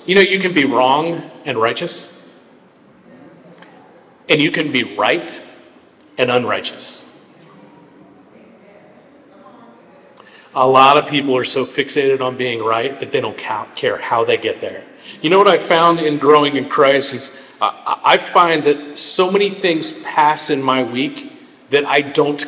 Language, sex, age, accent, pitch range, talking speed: English, male, 40-59, American, 135-185 Hz, 150 wpm